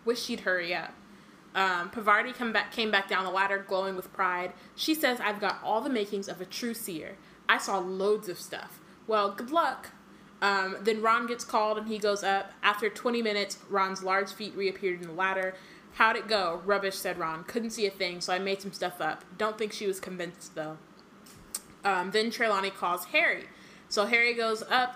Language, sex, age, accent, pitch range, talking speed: English, female, 20-39, American, 185-210 Hz, 200 wpm